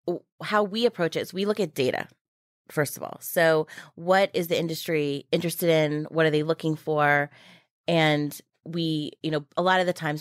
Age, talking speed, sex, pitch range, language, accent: 30-49, 195 wpm, female, 150-190 Hz, English, American